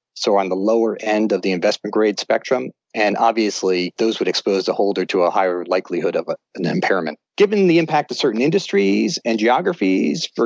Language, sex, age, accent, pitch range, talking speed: English, male, 40-59, American, 95-125 Hz, 190 wpm